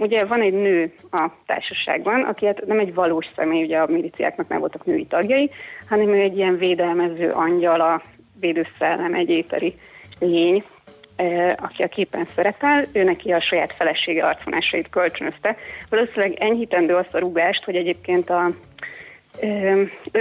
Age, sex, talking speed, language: 30-49, female, 145 wpm, Hungarian